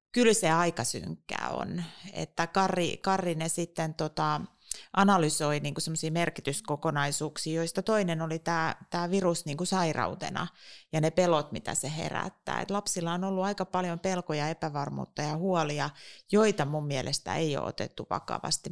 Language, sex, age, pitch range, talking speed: Finnish, female, 30-49, 155-195 Hz, 140 wpm